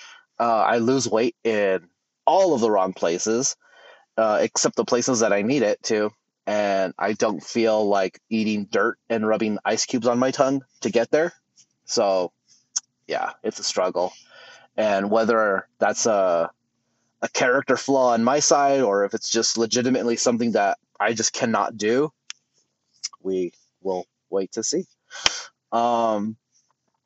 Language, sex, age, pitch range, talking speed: English, male, 30-49, 110-135 Hz, 150 wpm